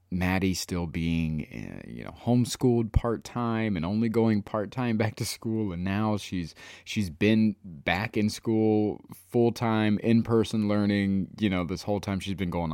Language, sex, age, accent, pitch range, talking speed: English, male, 20-39, American, 90-115 Hz, 155 wpm